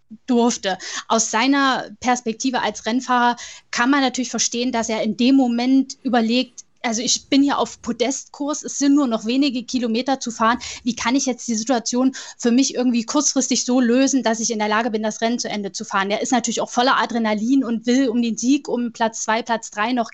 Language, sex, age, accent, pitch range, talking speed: German, female, 10-29, German, 225-255 Hz, 210 wpm